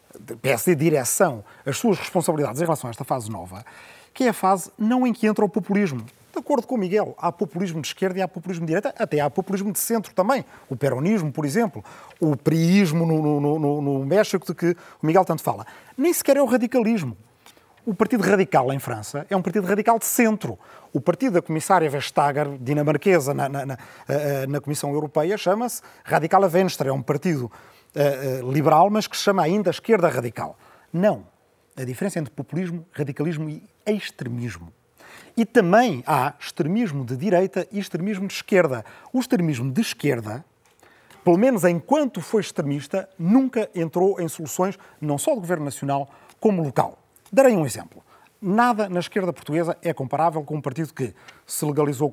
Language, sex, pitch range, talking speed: Portuguese, male, 145-205 Hz, 180 wpm